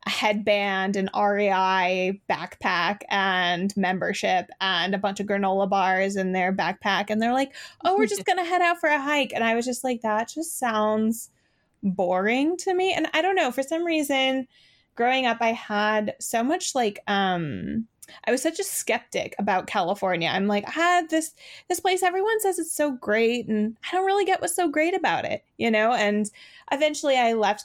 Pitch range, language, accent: 200-295 Hz, English, American